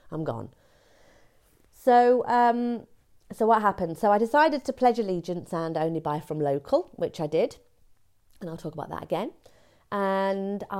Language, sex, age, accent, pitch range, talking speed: English, female, 40-59, British, 165-235 Hz, 165 wpm